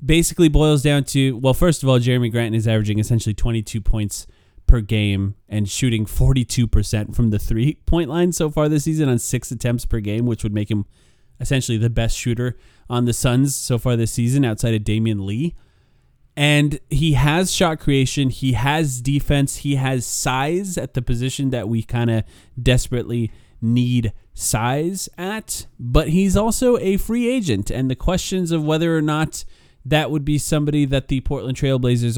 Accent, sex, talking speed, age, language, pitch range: American, male, 180 wpm, 30-49, English, 110-145 Hz